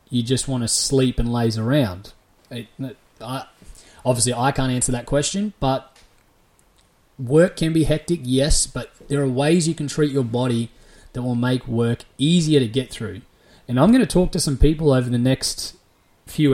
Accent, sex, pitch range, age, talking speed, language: Australian, male, 115-145 Hz, 20-39, 180 wpm, English